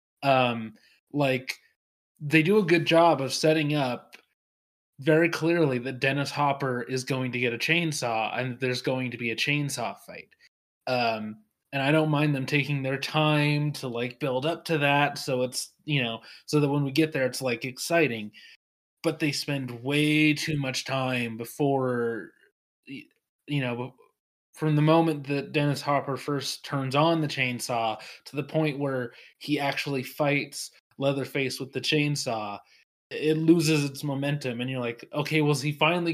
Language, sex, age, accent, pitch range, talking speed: English, male, 20-39, American, 130-155 Hz, 170 wpm